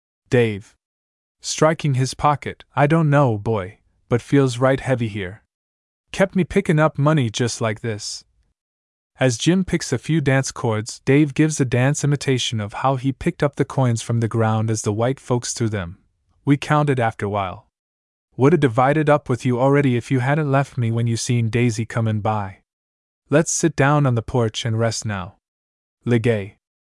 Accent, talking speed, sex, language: American, 180 wpm, male, English